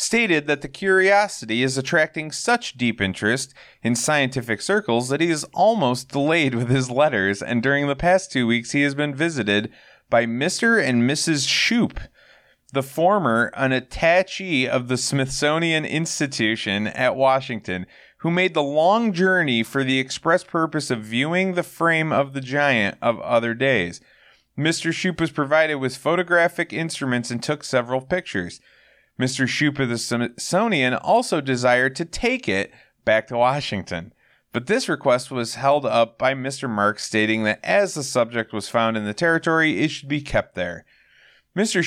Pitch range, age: 120-160 Hz, 30-49